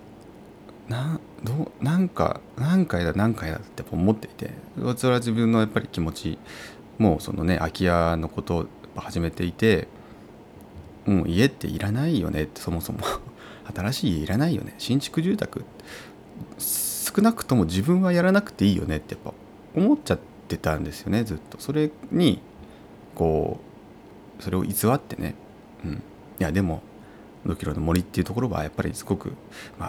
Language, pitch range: Japanese, 85-115 Hz